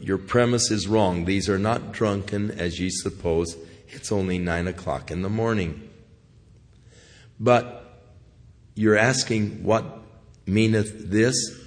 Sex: male